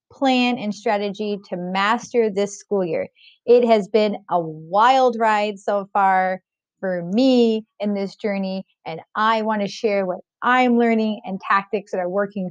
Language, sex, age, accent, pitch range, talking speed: English, female, 30-49, American, 200-250 Hz, 160 wpm